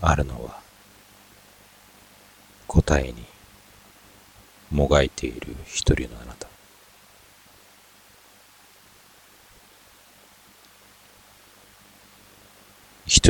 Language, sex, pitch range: Japanese, male, 95-105 Hz